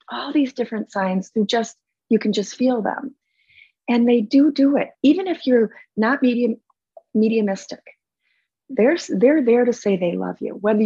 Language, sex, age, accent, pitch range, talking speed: English, female, 30-49, American, 200-255 Hz, 170 wpm